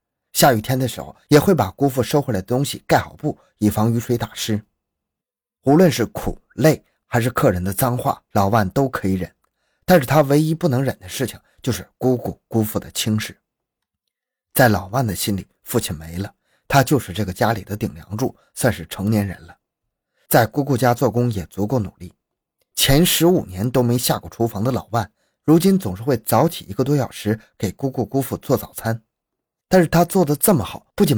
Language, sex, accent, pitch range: Chinese, male, native, 100-135 Hz